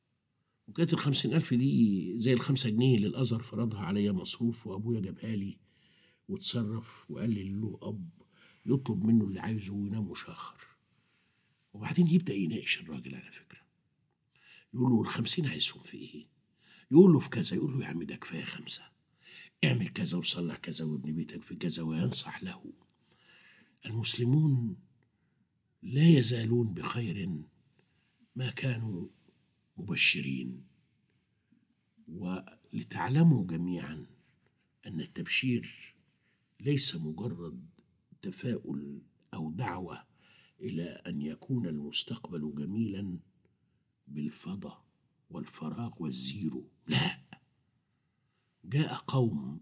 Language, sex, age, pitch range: Arabic, male, 60-79, 100-140 Hz